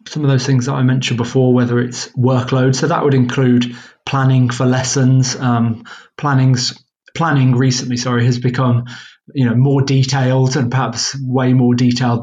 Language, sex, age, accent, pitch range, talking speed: English, male, 20-39, British, 120-135 Hz, 165 wpm